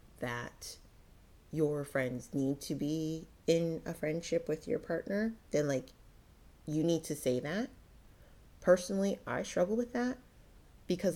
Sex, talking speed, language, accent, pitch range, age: female, 135 wpm, English, American, 140-200 Hz, 30-49